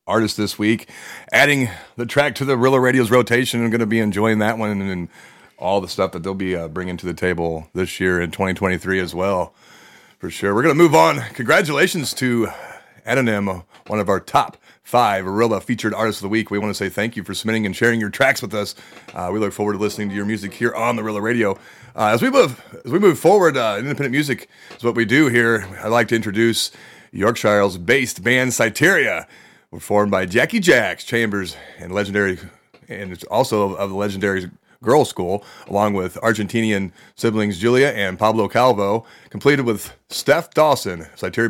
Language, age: English, 30-49